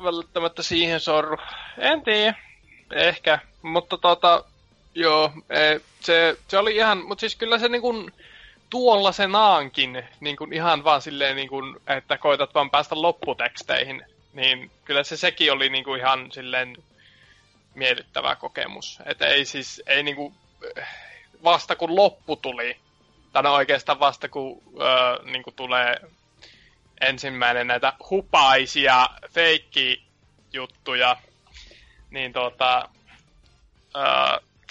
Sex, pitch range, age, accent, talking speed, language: male, 130-170 Hz, 20-39, native, 115 wpm, Finnish